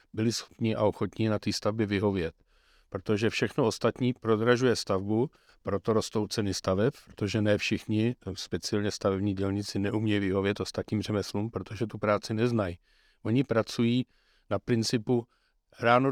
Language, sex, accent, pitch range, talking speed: Czech, male, native, 100-110 Hz, 135 wpm